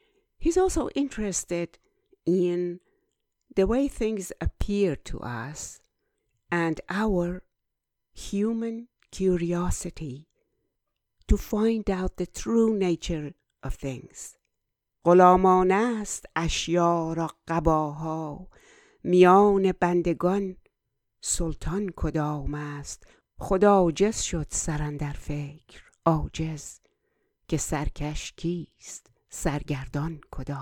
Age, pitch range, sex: 60-79, 155-195 Hz, female